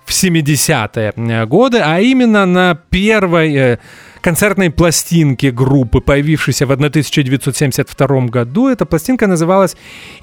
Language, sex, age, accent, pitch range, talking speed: Russian, male, 30-49, native, 125-170 Hz, 95 wpm